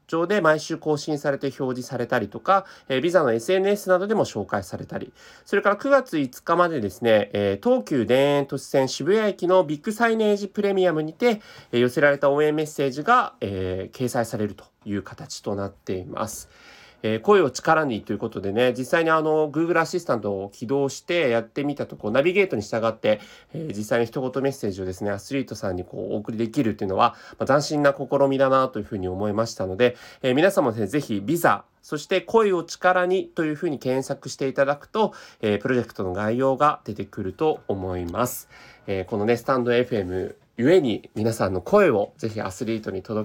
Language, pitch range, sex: Japanese, 110-170 Hz, male